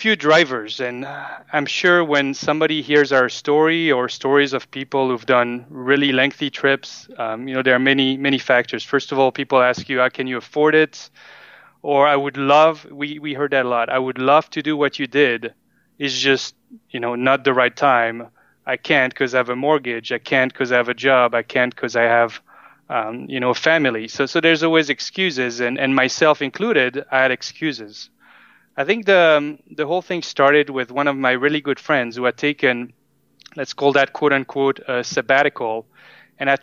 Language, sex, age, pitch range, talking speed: English, male, 30-49, 125-150 Hz, 210 wpm